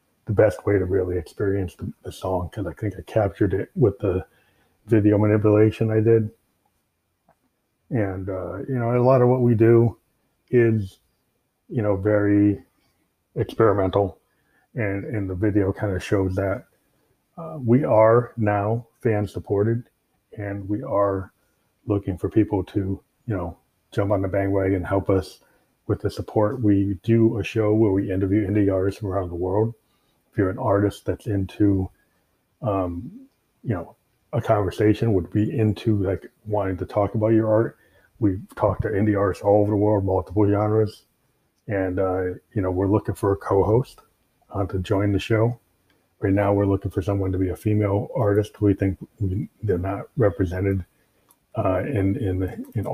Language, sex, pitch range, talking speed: English, male, 95-110 Hz, 165 wpm